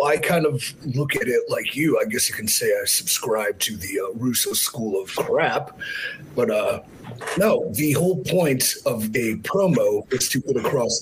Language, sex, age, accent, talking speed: English, male, 30-49, American, 190 wpm